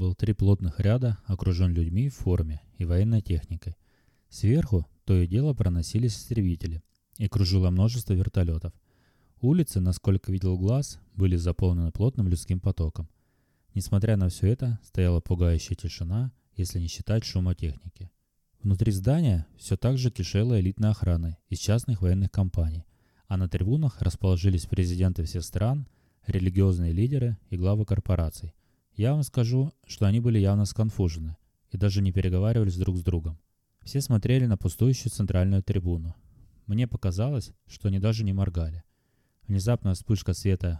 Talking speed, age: 140 wpm, 20-39